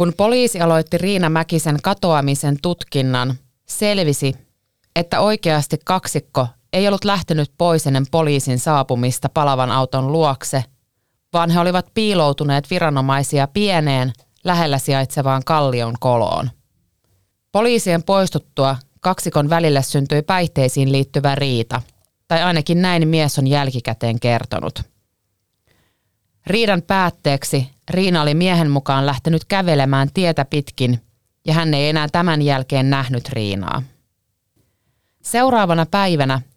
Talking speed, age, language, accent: 110 wpm, 30-49, Finnish, native